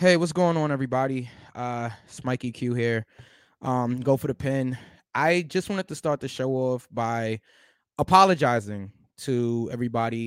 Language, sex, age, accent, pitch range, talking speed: English, male, 20-39, American, 120-150 Hz, 160 wpm